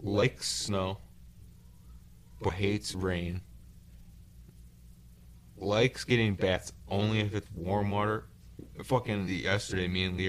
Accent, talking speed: American, 110 wpm